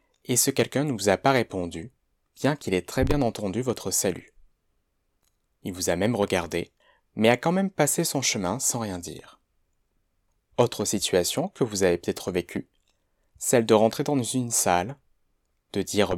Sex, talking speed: male, 170 wpm